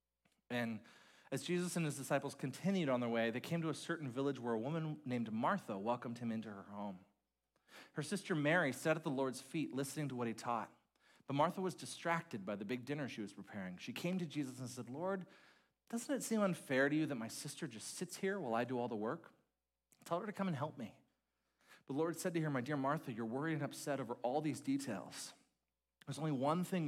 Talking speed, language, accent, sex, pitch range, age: 230 wpm, English, American, male, 110-155 Hz, 40-59